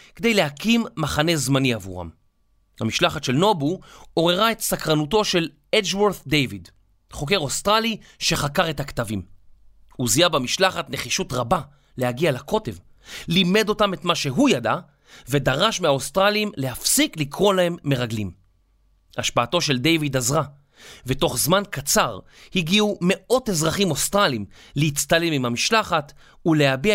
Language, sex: Hebrew, male